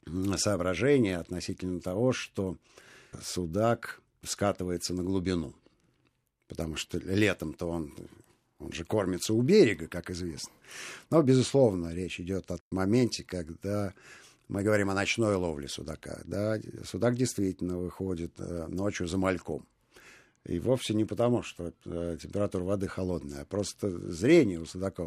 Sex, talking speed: male, 125 wpm